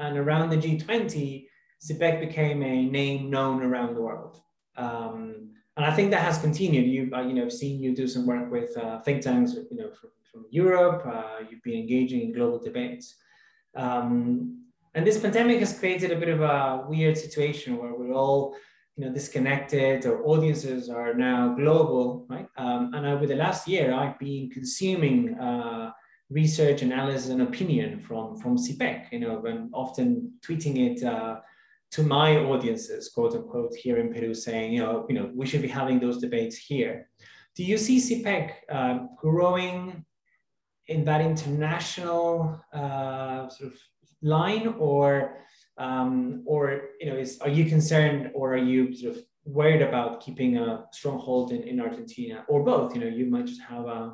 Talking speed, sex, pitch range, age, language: 175 wpm, male, 125-180 Hz, 20-39, English